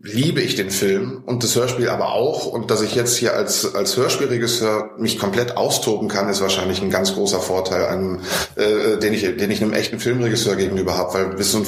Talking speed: 215 wpm